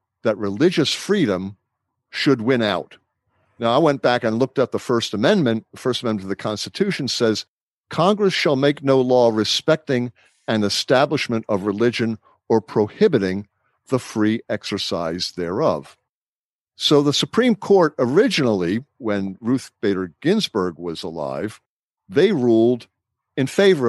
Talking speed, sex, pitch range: 135 wpm, male, 100-125 Hz